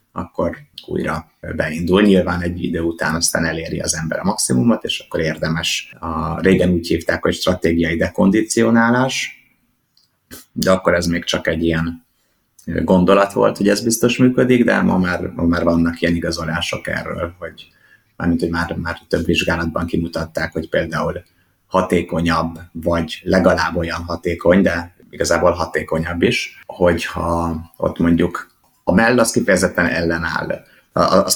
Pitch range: 80-90 Hz